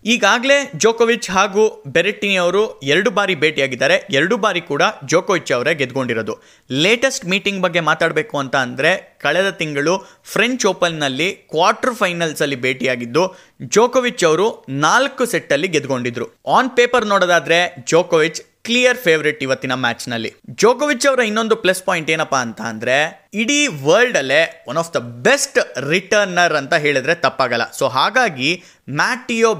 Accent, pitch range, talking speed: native, 140-225 Hz, 130 wpm